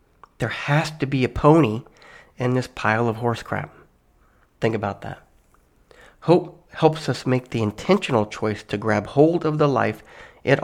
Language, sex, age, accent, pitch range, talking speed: English, male, 40-59, American, 110-145 Hz, 165 wpm